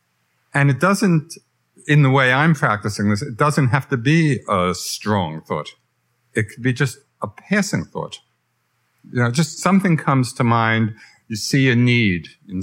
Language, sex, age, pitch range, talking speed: English, male, 50-69, 95-130 Hz, 170 wpm